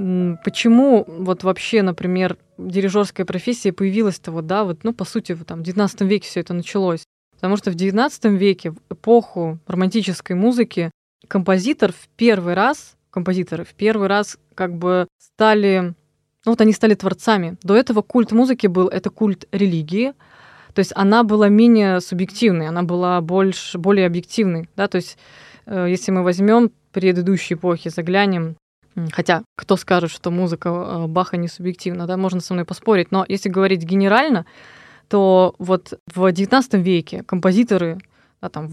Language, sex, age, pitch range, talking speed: Russian, female, 20-39, 180-210 Hz, 135 wpm